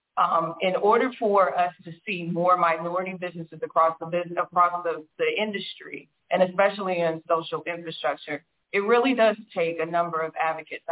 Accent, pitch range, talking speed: American, 170-210 Hz, 165 wpm